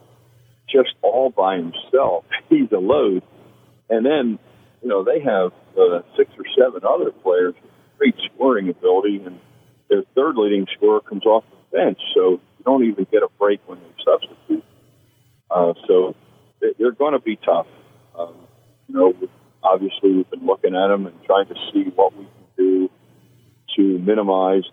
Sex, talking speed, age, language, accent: male, 165 wpm, 50-69, English, American